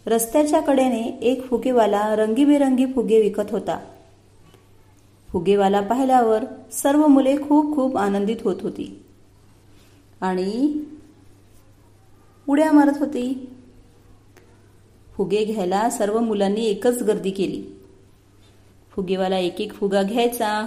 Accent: native